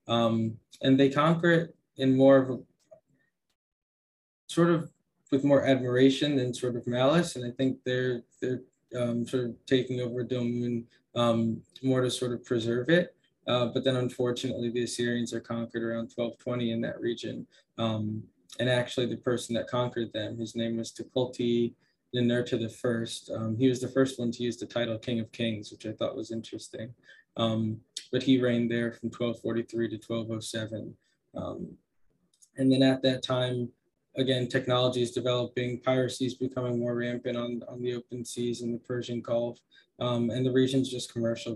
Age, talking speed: 20-39, 175 wpm